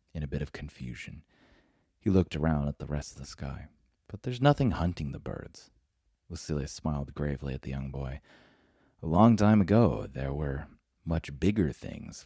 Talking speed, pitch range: 175 wpm, 70-90 Hz